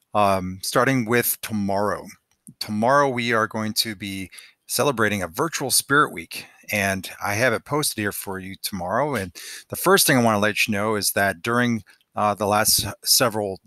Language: English